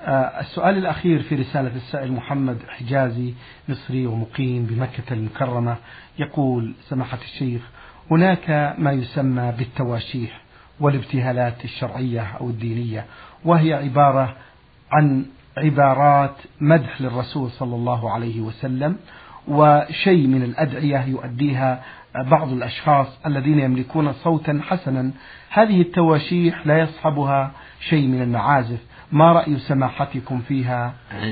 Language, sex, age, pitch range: Arabic, male, 50-69, 125-155 Hz